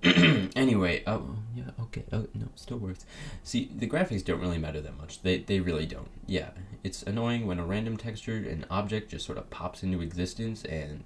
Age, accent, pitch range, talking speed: 20-39, American, 85-110 Hz, 195 wpm